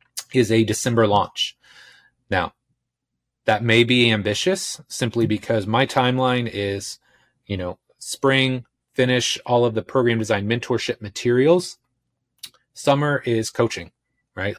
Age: 30-49